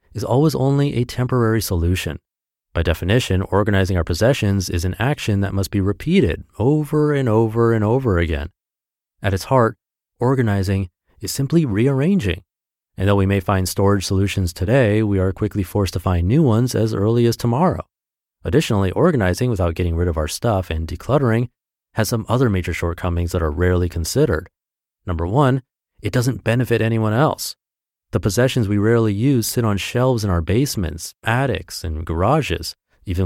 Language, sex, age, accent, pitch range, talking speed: English, male, 30-49, American, 90-125 Hz, 165 wpm